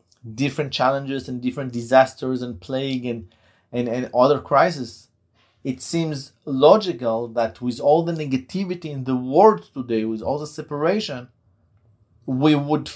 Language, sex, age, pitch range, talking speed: English, male, 30-49, 110-150 Hz, 140 wpm